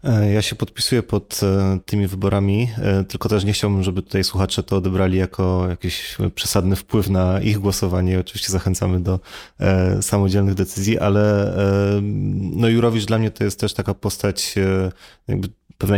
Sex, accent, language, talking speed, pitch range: male, native, Polish, 140 wpm, 95-100 Hz